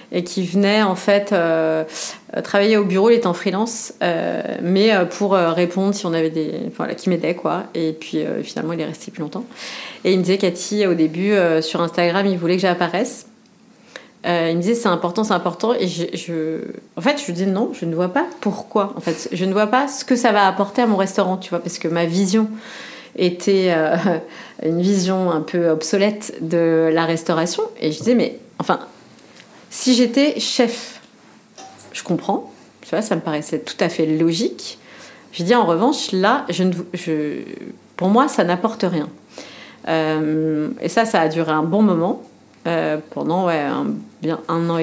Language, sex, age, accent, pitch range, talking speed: French, female, 30-49, French, 170-225 Hz, 195 wpm